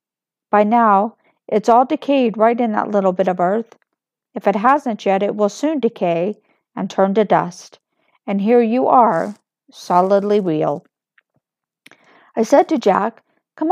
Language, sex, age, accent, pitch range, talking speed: English, female, 50-69, American, 200-255 Hz, 155 wpm